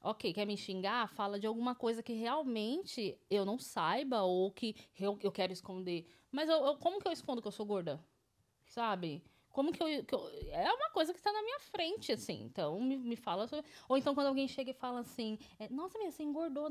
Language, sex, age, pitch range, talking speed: Portuguese, female, 20-39, 185-255 Hz, 225 wpm